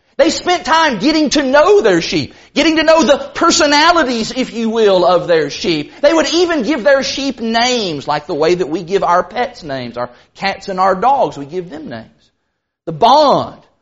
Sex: male